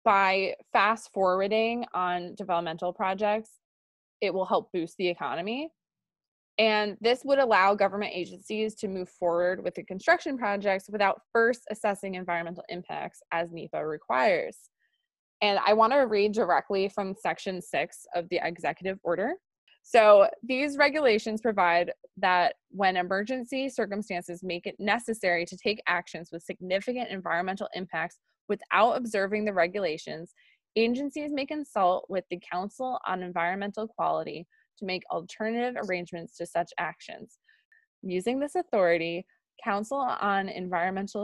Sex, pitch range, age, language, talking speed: female, 175-220 Hz, 20-39, English, 130 wpm